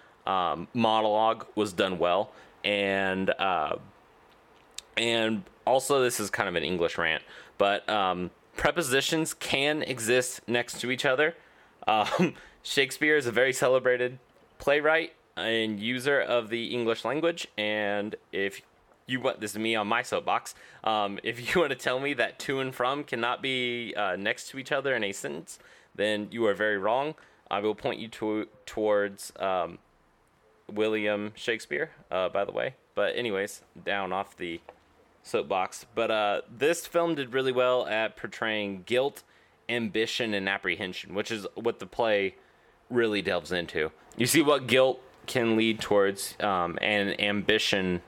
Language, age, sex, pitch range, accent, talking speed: English, 20-39, male, 100-125 Hz, American, 155 wpm